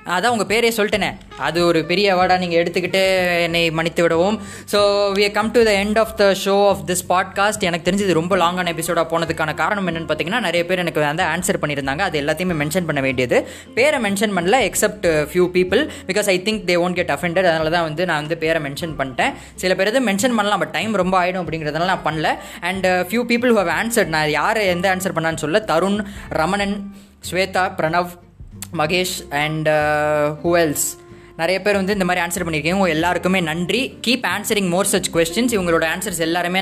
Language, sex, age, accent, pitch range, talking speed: Tamil, female, 20-39, native, 165-200 Hz, 185 wpm